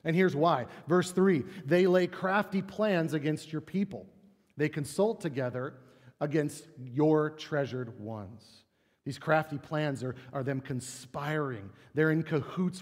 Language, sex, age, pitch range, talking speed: English, male, 40-59, 130-180 Hz, 135 wpm